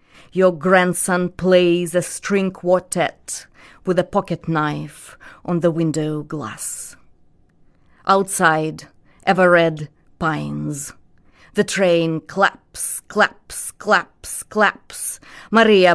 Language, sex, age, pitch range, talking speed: English, female, 30-49, 150-180 Hz, 90 wpm